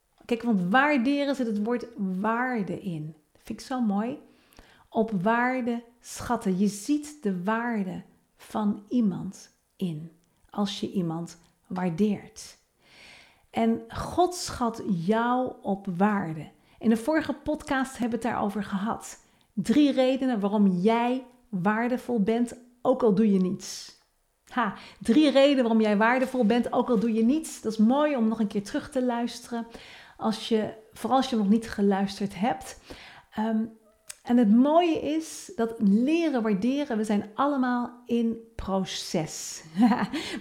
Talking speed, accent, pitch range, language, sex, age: 140 wpm, Dutch, 205-250 Hz, Dutch, female, 40-59